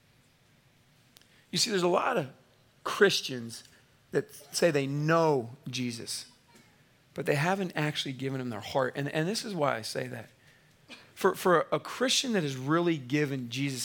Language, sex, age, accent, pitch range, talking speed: English, male, 40-59, American, 135-190 Hz, 160 wpm